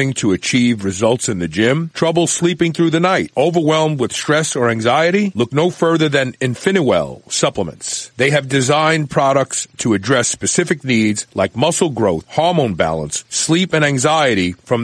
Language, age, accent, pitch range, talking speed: English, 40-59, American, 125-165 Hz, 160 wpm